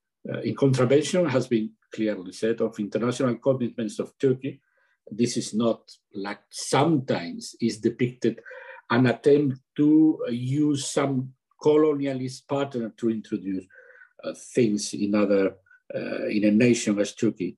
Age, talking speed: 50-69, 130 wpm